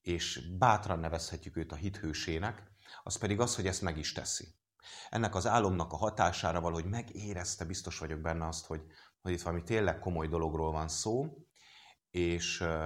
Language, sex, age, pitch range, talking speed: English, male, 30-49, 80-100 Hz, 165 wpm